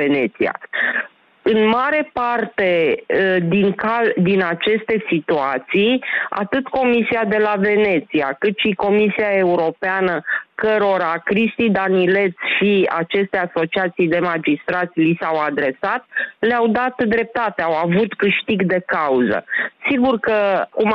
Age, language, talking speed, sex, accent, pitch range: 30-49, Romanian, 115 wpm, female, native, 180-220 Hz